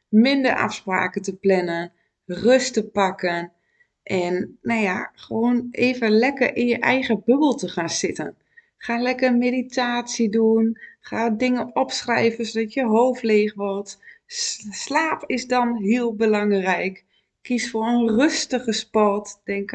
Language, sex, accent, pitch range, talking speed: Dutch, female, Dutch, 195-245 Hz, 135 wpm